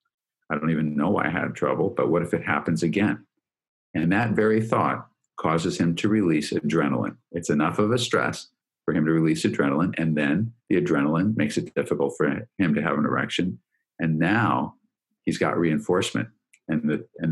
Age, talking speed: 50-69, 185 wpm